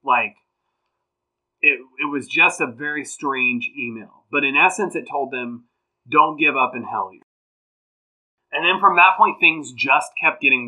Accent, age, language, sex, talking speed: American, 30-49, English, male, 170 wpm